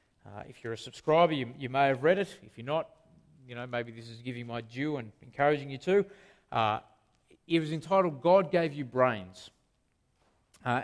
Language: English